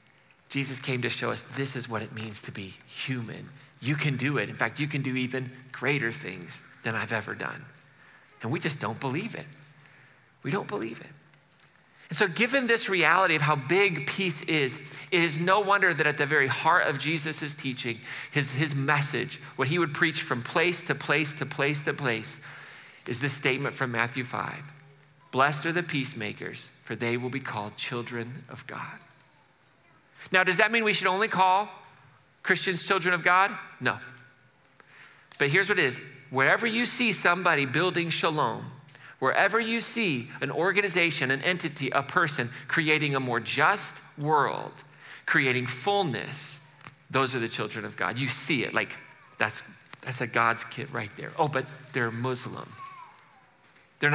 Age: 40-59